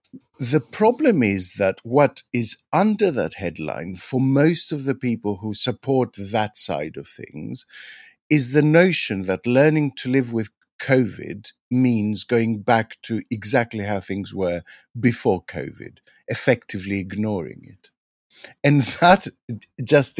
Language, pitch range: English, 110-150 Hz